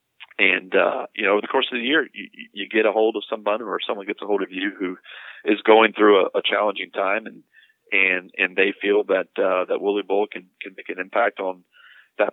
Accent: American